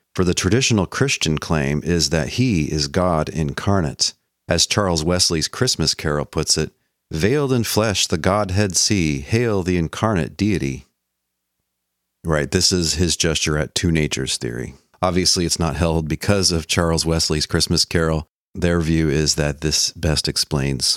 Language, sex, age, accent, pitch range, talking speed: English, male, 40-59, American, 75-95 Hz, 155 wpm